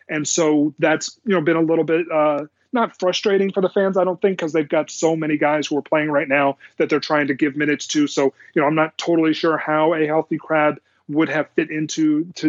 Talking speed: 250 wpm